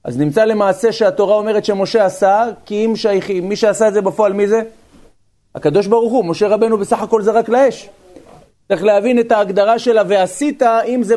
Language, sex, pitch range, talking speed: Hebrew, male, 195-230 Hz, 185 wpm